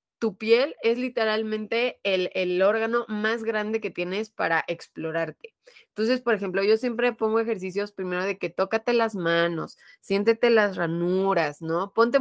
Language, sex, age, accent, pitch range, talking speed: Spanish, female, 20-39, Mexican, 170-225 Hz, 150 wpm